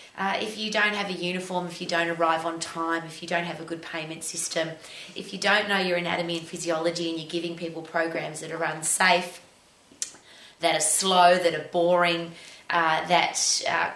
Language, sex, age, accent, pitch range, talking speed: English, female, 20-39, Australian, 165-190 Hz, 200 wpm